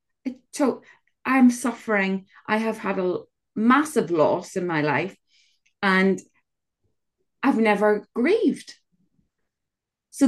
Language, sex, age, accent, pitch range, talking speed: English, female, 30-49, British, 190-280 Hz, 100 wpm